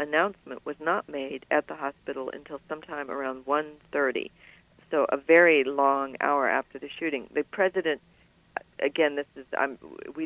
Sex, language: female, English